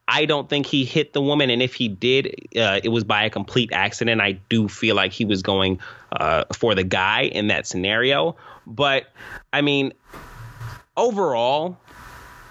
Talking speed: 175 wpm